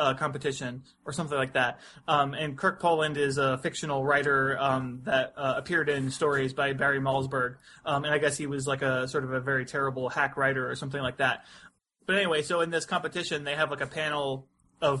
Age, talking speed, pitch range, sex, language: 20-39, 215 wpm, 135-160 Hz, male, English